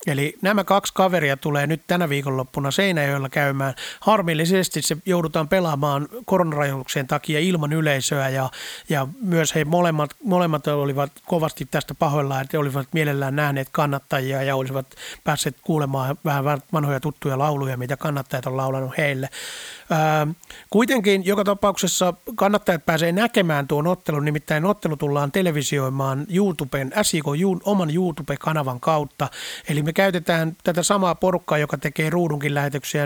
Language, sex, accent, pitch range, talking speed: Finnish, male, native, 145-180 Hz, 130 wpm